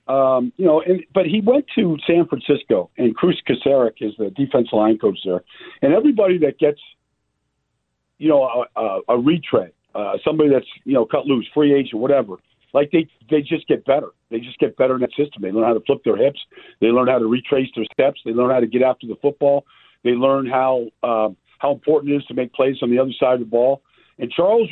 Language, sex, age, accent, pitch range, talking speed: English, male, 50-69, American, 130-165 Hz, 230 wpm